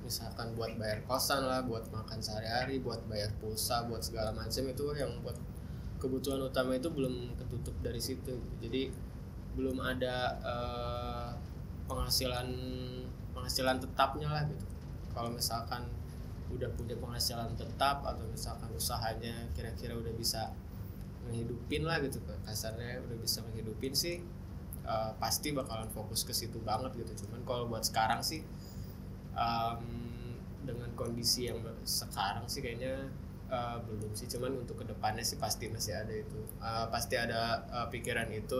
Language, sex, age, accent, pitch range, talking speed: Indonesian, male, 20-39, native, 110-125 Hz, 140 wpm